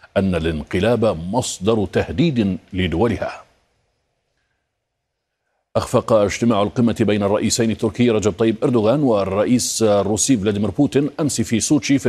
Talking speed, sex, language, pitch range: 110 wpm, male, Arabic, 95-120 Hz